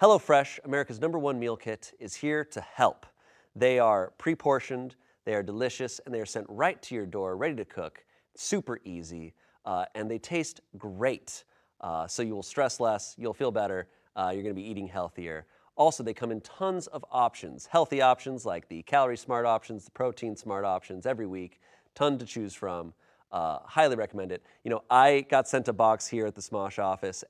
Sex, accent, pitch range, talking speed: male, American, 100-150 Hz, 195 wpm